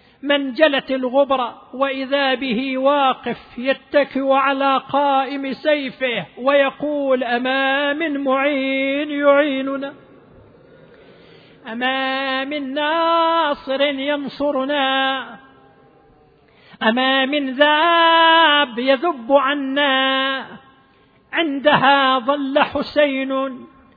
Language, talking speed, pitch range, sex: Arabic, 70 wpm, 265-290 Hz, male